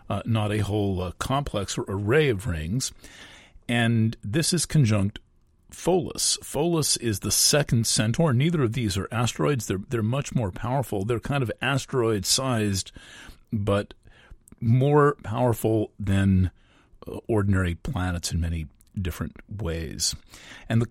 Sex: male